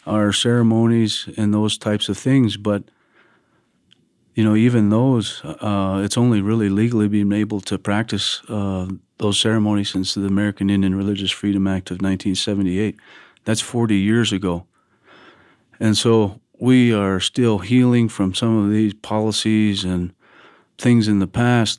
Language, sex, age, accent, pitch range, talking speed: English, male, 40-59, American, 95-110 Hz, 145 wpm